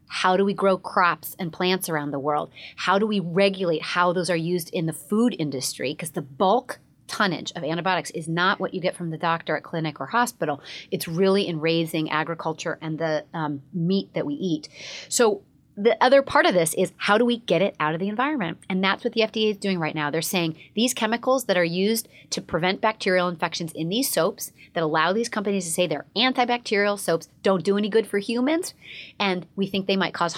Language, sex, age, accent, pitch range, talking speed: English, female, 30-49, American, 165-210 Hz, 220 wpm